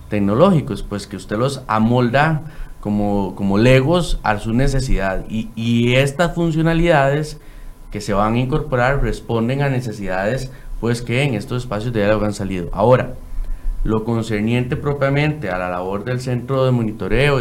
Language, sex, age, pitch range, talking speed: Spanish, male, 30-49, 105-140 Hz, 150 wpm